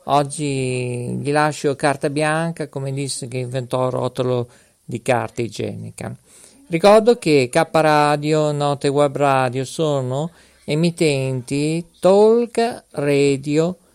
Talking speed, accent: 110 wpm, native